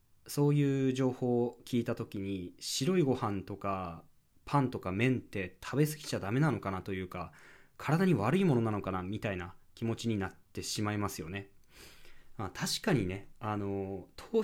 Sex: male